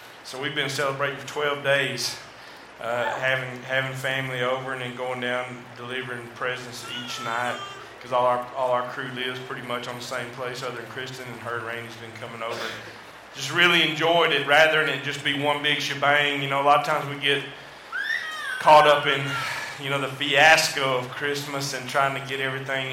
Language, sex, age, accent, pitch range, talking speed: English, male, 30-49, American, 125-140 Hz, 200 wpm